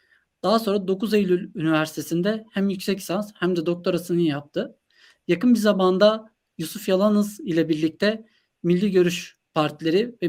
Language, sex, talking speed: Turkish, male, 135 wpm